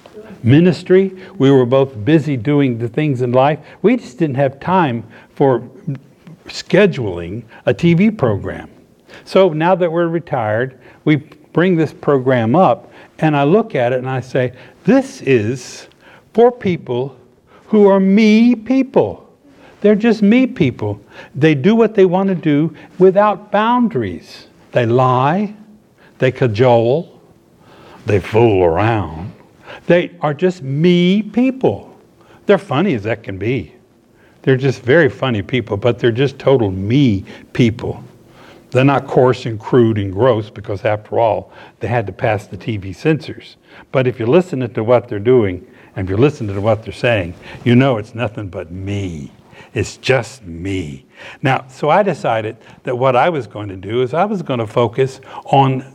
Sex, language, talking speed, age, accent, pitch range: male, English, 160 wpm, 60-79, American, 120-175 Hz